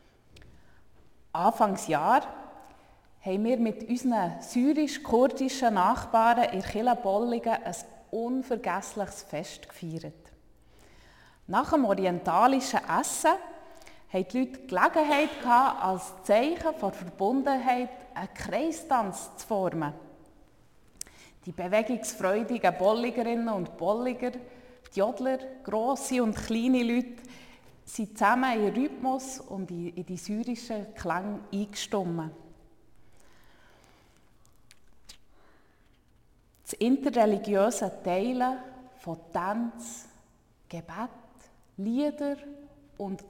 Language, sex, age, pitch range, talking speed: German, female, 30-49, 190-250 Hz, 85 wpm